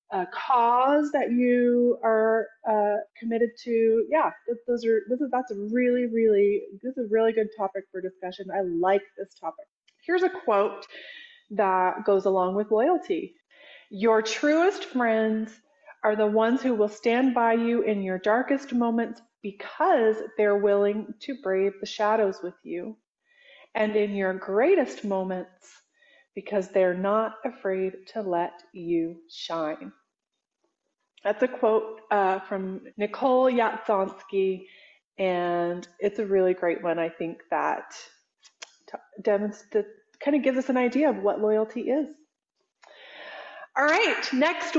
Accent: American